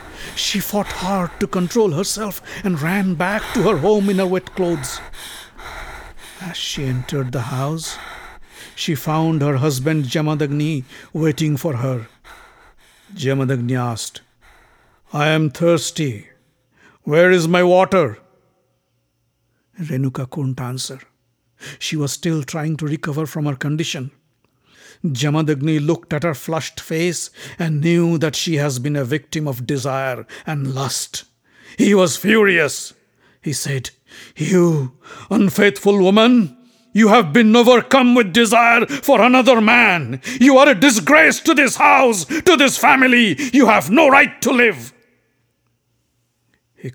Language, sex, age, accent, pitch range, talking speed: English, male, 60-79, Indian, 140-205 Hz, 130 wpm